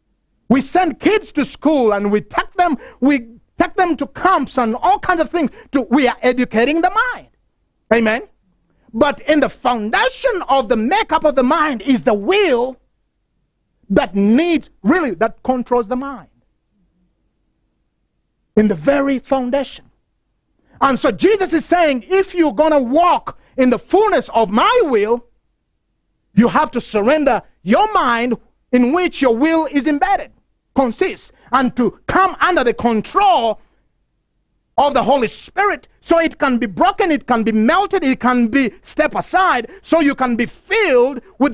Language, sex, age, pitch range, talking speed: English, male, 50-69, 230-315 Hz, 155 wpm